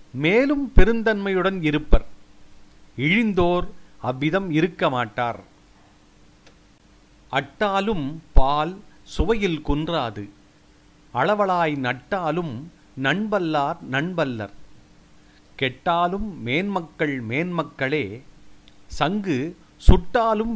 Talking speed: 60 wpm